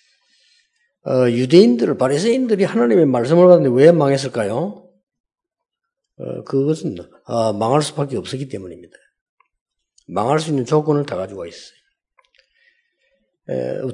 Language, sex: Korean, male